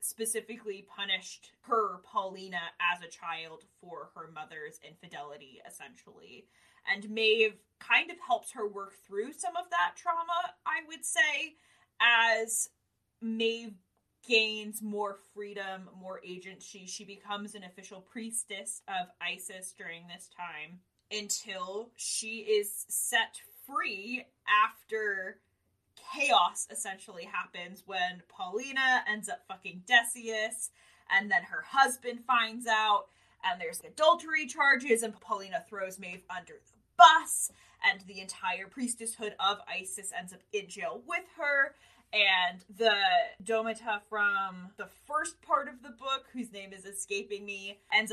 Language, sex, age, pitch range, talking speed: English, female, 20-39, 190-250 Hz, 130 wpm